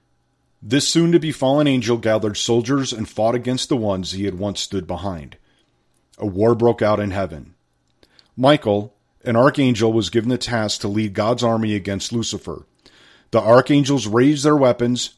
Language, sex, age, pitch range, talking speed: English, male, 40-59, 100-130 Hz, 155 wpm